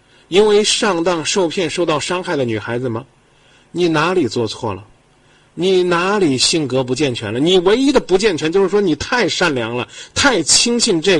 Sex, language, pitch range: male, Chinese, 120-185 Hz